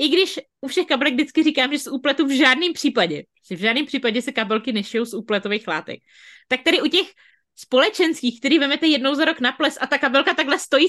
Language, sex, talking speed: Czech, female, 220 wpm